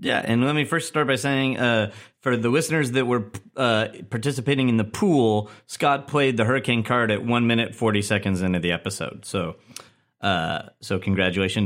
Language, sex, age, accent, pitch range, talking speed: English, male, 30-49, American, 110-130 Hz, 185 wpm